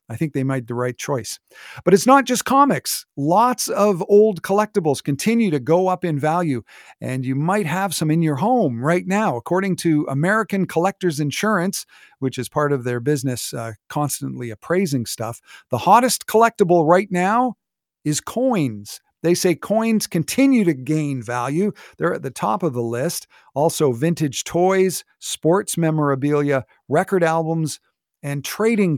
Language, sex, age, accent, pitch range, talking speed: English, male, 50-69, American, 135-195 Hz, 160 wpm